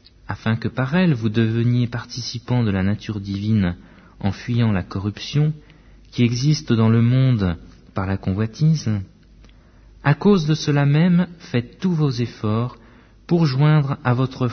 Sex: male